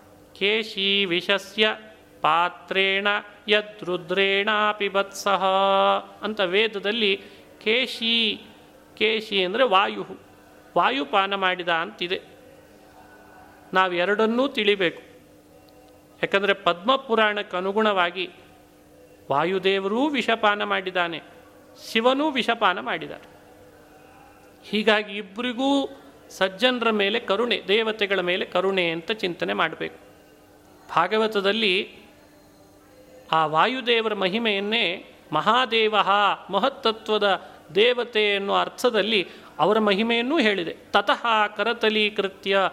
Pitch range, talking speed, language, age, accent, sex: 185-220 Hz, 70 wpm, Kannada, 30-49, native, male